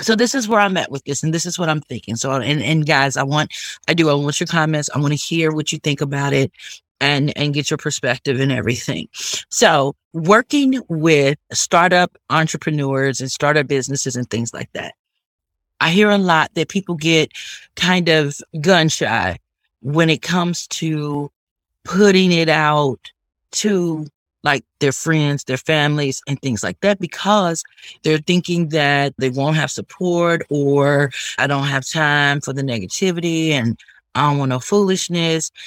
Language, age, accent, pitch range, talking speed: English, 30-49, American, 140-175 Hz, 175 wpm